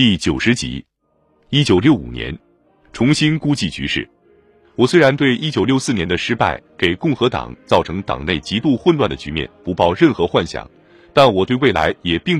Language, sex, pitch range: Chinese, male, 95-140 Hz